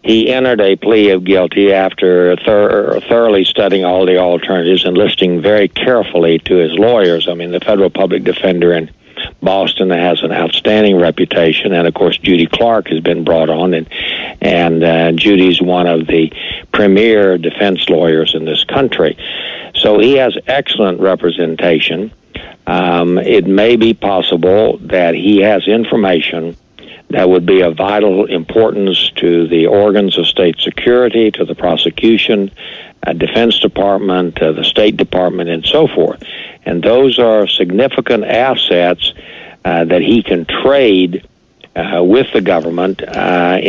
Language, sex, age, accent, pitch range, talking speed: English, male, 60-79, American, 85-100 Hz, 145 wpm